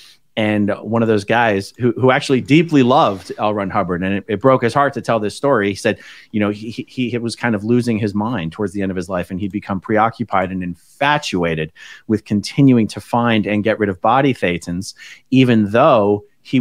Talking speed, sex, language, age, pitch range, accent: 220 wpm, male, English, 30-49, 105-135 Hz, American